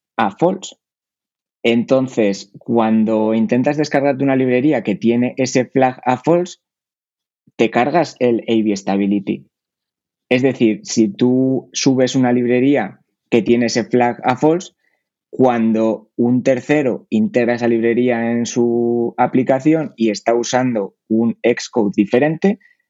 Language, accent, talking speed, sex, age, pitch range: Spanish, Spanish, 125 wpm, male, 20-39, 115-135 Hz